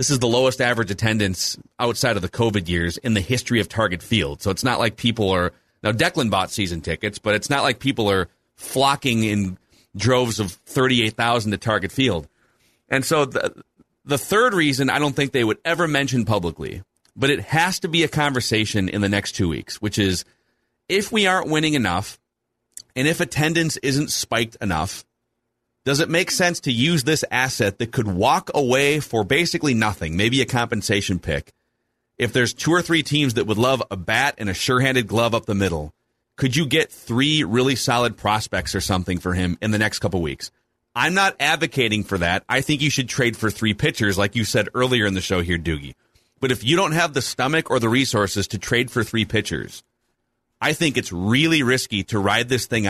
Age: 30-49